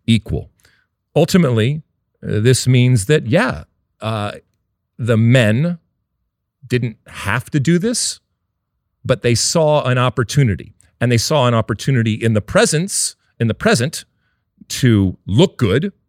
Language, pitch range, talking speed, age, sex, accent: English, 95-130 Hz, 125 wpm, 40-59, male, American